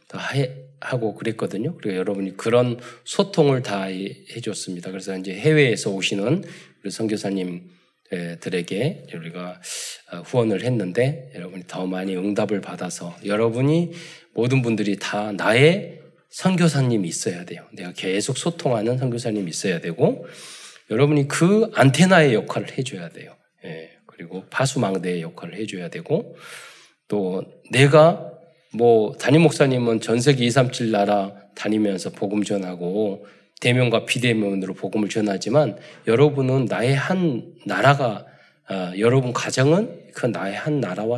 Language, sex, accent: Korean, male, native